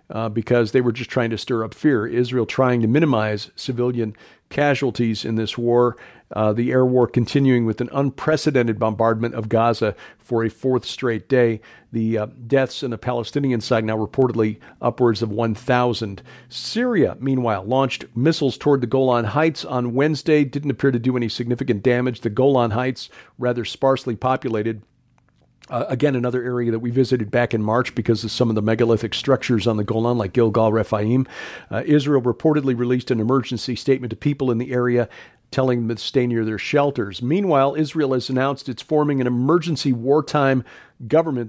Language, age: English, 50-69